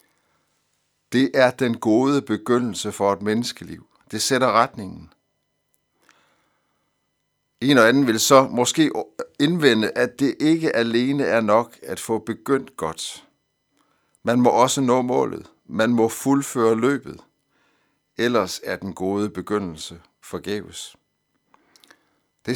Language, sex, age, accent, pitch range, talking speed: Danish, male, 60-79, native, 100-135 Hz, 115 wpm